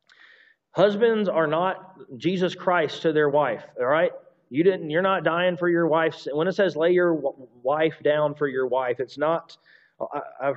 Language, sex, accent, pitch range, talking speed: English, male, American, 130-175 Hz, 165 wpm